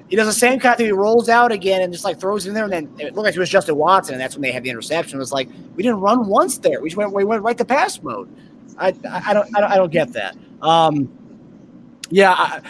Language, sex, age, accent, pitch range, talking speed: English, male, 30-49, American, 160-210 Hz, 285 wpm